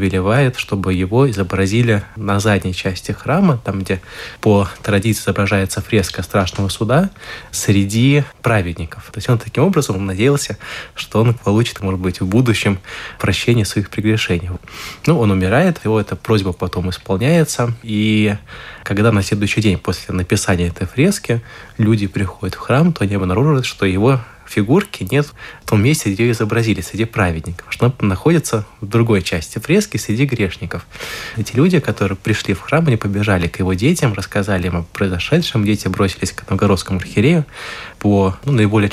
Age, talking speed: 20-39, 155 wpm